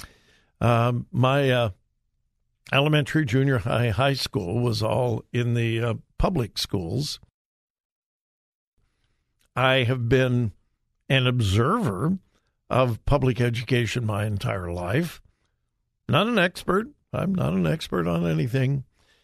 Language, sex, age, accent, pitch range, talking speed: English, male, 60-79, American, 120-160 Hz, 110 wpm